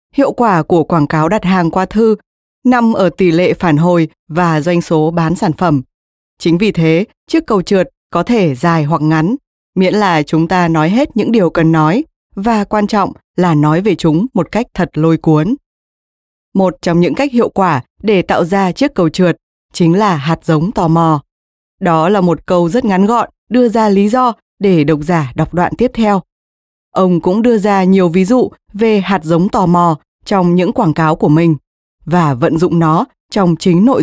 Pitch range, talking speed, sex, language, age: 165-210 Hz, 205 wpm, female, Vietnamese, 20-39